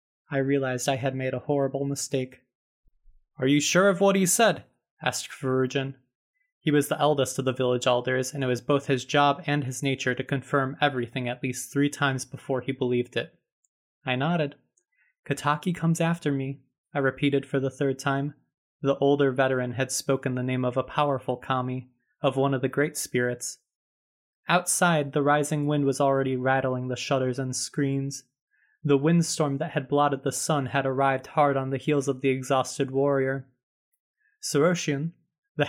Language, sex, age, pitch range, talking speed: English, male, 20-39, 130-160 Hz, 175 wpm